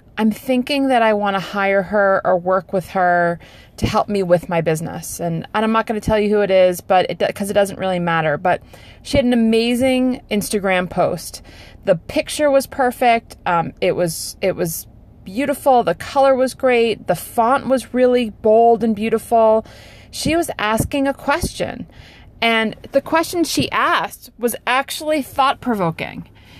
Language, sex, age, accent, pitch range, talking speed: English, female, 30-49, American, 170-240 Hz, 165 wpm